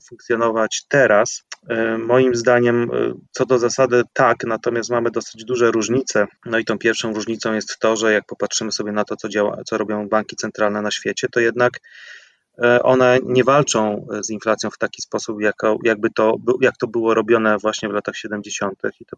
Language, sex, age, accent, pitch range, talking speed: Polish, male, 30-49, native, 110-125 Hz, 180 wpm